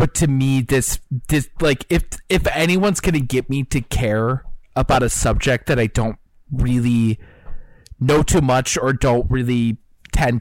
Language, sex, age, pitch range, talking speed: English, male, 20-39, 110-145 Hz, 160 wpm